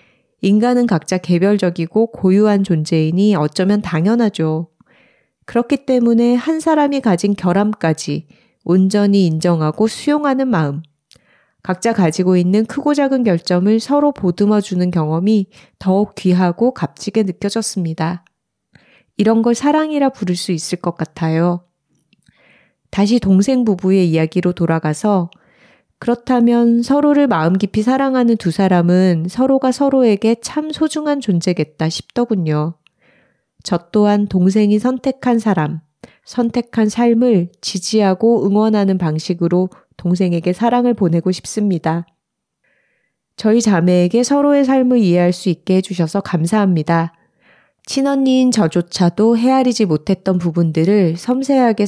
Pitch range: 175-235 Hz